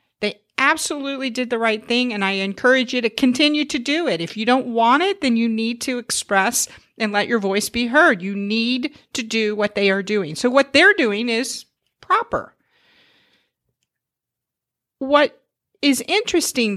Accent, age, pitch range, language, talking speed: American, 50-69, 210-270 Hz, English, 170 wpm